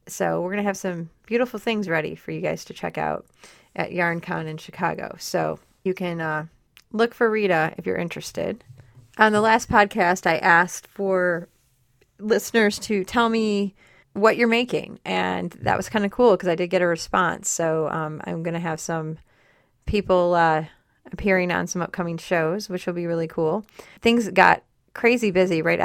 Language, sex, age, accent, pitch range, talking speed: English, female, 30-49, American, 160-195 Hz, 185 wpm